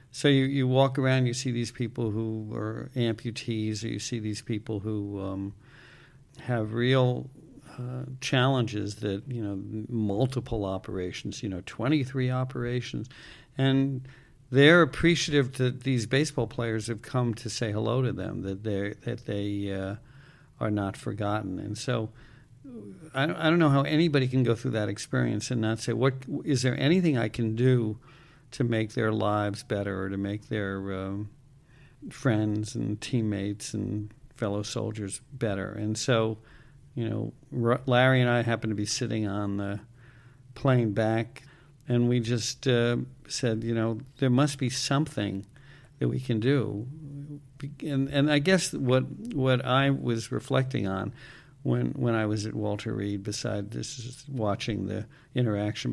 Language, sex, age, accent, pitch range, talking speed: English, male, 60-79, American, 105-135 Hz, 160 wpm